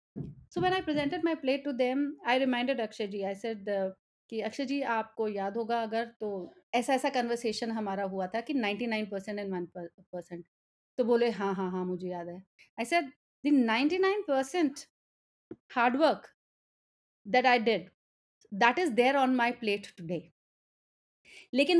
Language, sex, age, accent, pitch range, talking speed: Hindi, female, 30-49, native, 215-285 Hz, 120 wpm